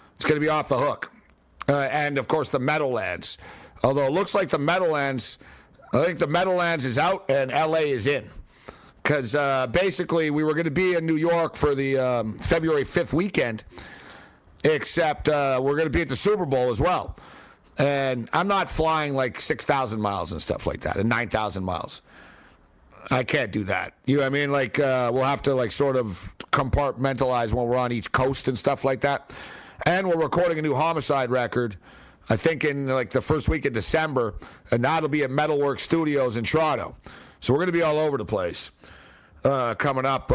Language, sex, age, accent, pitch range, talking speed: English, male, 60-79, American, 130-165 Hz, 200 wpm